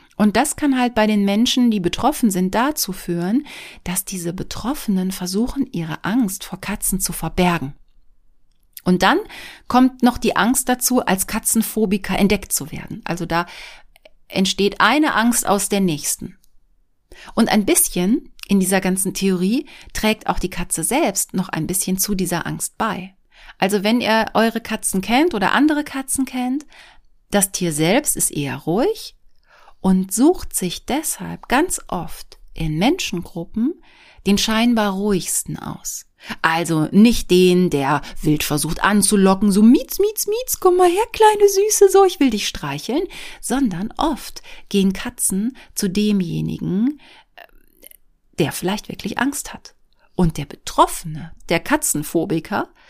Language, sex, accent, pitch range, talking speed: German, female, German, 180-260 Hz, 145 wpm